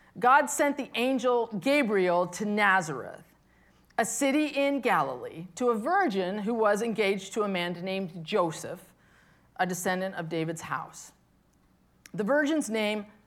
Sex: female